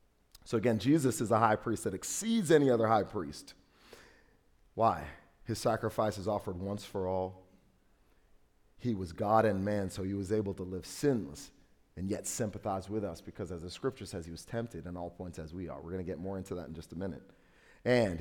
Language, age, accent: English, 40-59, American